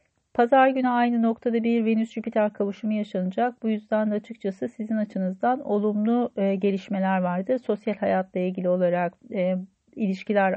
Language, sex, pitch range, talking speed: Turkish, female, 190-230 Hz, 130 wpm